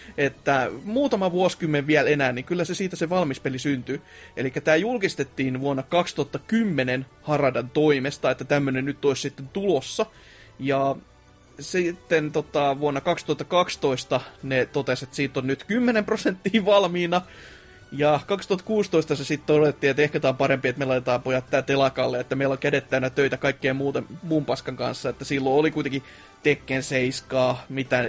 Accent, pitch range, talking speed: native, 130-155 Hz, 155 wpm